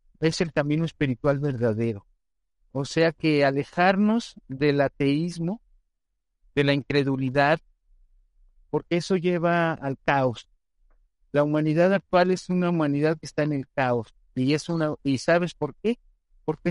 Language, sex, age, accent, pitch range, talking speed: Spanish, male, 50-69, Mexican, 140-170 Hz, 135 wpm